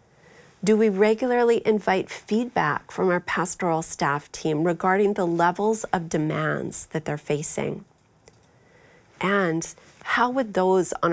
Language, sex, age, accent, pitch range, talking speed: English, female, 40-59, American, 160-205 Hz, 125 wpm